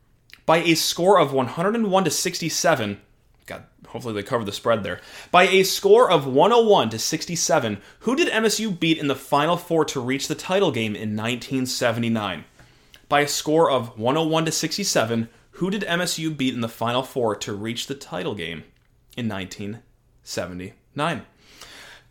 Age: 30-49